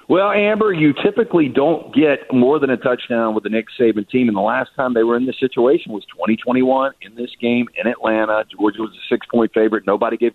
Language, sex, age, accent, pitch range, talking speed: English, male, 50-69, American, 110-130 Hz, 220 wpm